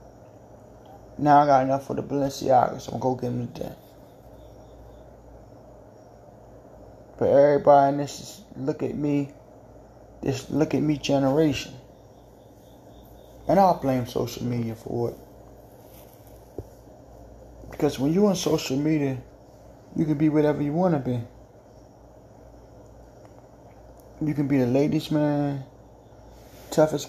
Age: 20-39